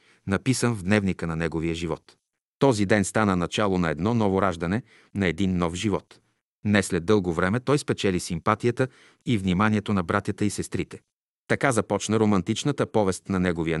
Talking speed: 160 wpm